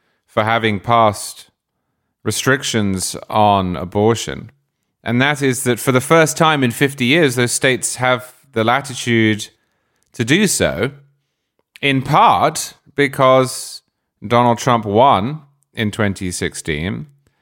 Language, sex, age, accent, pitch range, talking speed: English, male, 30-49, British, 95-125 Hz, 115 wpm